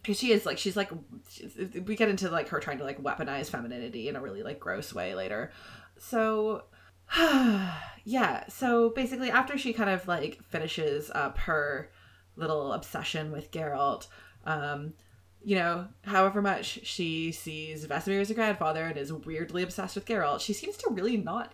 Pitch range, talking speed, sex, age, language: 155-205 Hz, 170 wpm, female, 20-39, English